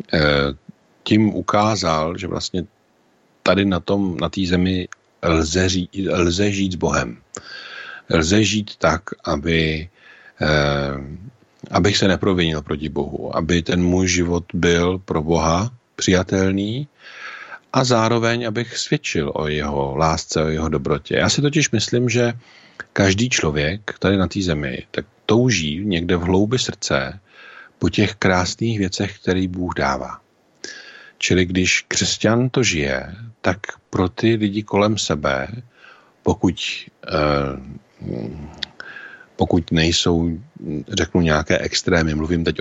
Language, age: Czech, 50-69